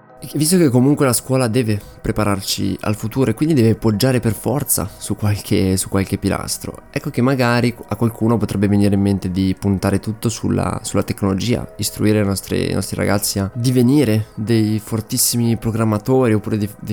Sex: male